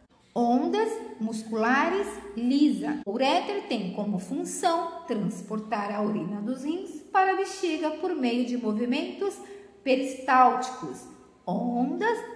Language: Portuguese